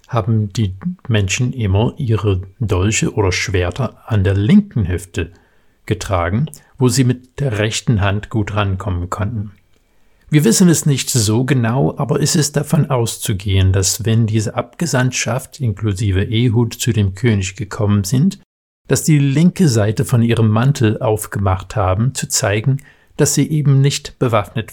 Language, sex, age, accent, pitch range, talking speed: German, male, 50-69, German, 100-135 Hz, 145 wpm